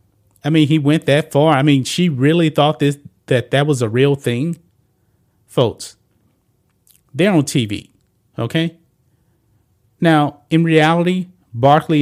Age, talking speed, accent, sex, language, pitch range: 30-49, 130 wpm, American, male, English, 120-155 Hz